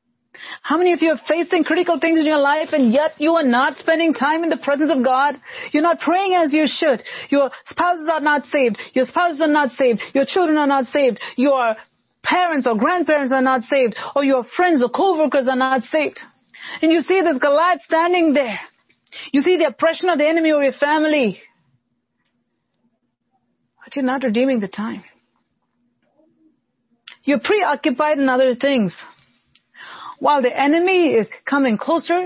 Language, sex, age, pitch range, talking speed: English, female, 40-59, 250-320 Hz, 175 wpm